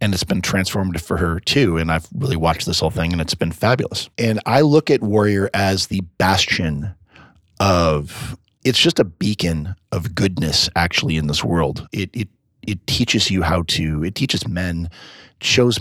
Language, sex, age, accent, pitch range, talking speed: English, male, 30-49, American, 85-110 Hz, 180 wpm